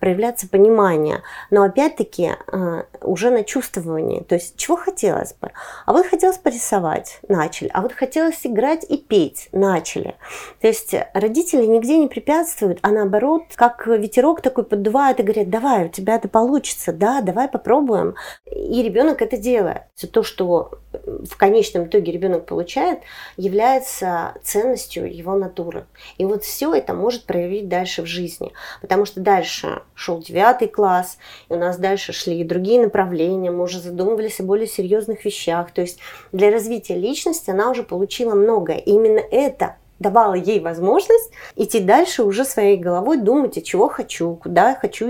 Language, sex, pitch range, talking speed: Russian, female, 185-265 Hz, 155 wpm